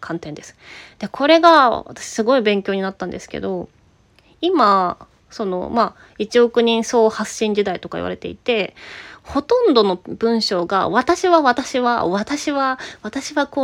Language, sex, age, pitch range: Japanese, female, 20-39, 205-290 Hz